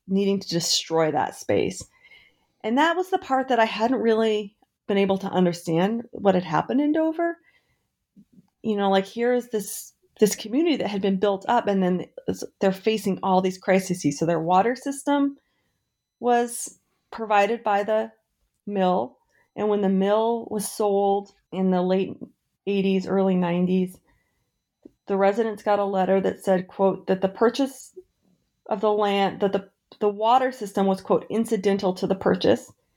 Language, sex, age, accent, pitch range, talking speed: English, female, 30-49, American, 180-220 Hz, 160 wpm